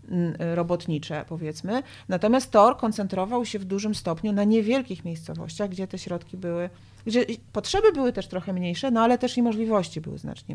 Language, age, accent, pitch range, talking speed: Polish, 40-59, native, 165-205 Hz, 165 wpm